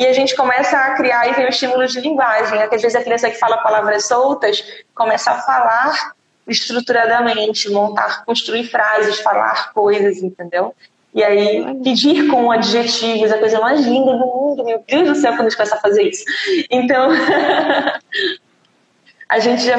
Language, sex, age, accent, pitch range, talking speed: Portuguese, female, 20-39, Brazilian, 220-265 Hz, 175 wpm